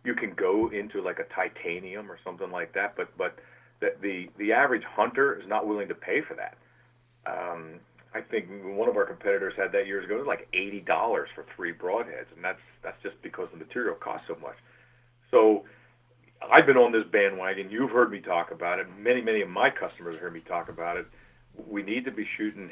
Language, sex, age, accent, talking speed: English, male, 40-59, American, 210 wpm